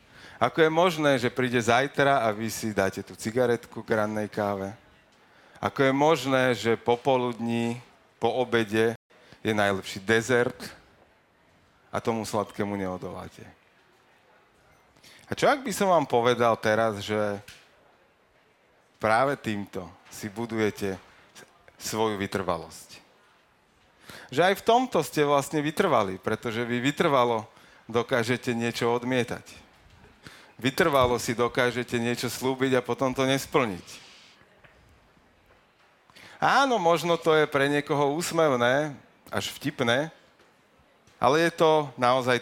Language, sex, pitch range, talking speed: Slovak, male, 110-140 Hz, 110 wpm